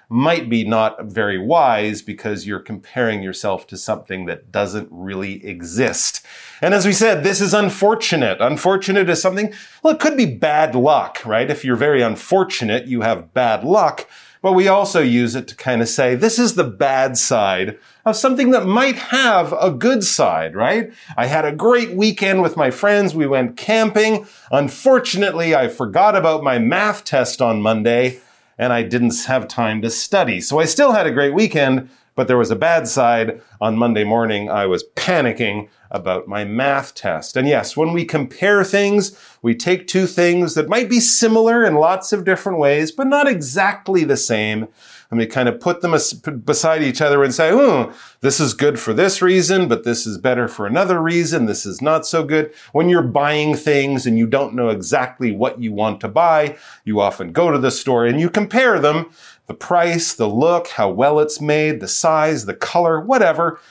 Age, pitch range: 40-59, 120-190 Hz